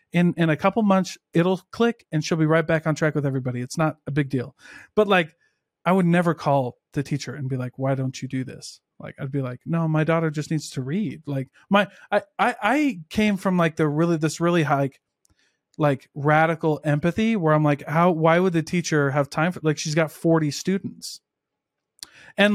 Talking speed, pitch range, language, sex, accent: 215 wpm, 145-175 Hz, English, male, American